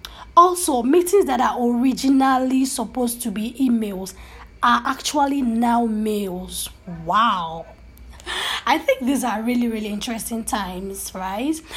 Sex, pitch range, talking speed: female, 205-245 Hz, 115 wpm